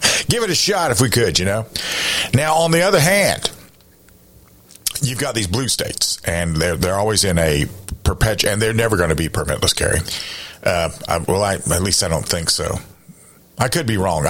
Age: 50-69